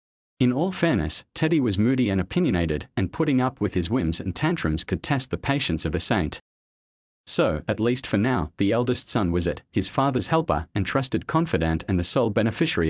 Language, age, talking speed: English, 40-59, 200 wpm